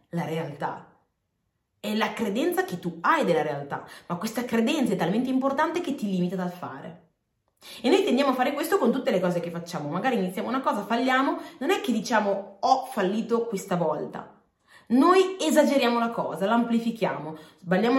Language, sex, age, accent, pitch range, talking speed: Italian, female, 20-39, native, 180-255 Hz, 175 wpm